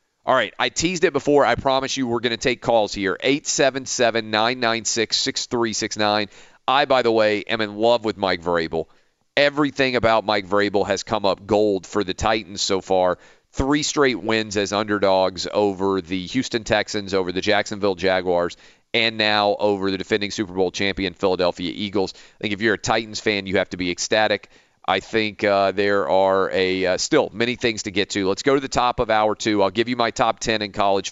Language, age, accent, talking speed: English, 40-59, American, 200 wpm